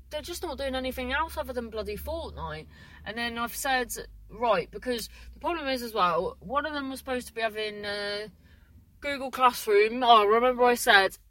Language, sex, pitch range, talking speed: English, female, 190-265 Hz, 200 wpm